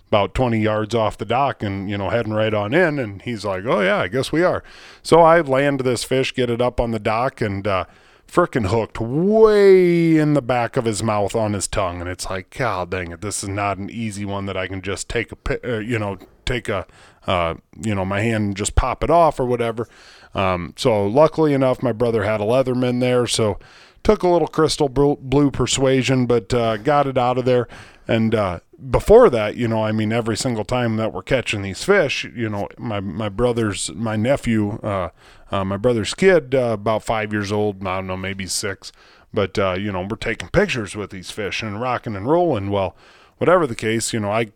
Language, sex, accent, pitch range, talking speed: English, male, American, 100-130 Hz, 220 wpm